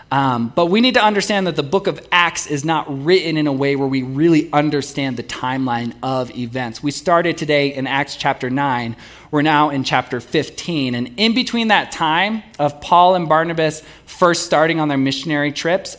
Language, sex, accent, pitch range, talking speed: English, male, American, 130-180 Hz, 195 wpm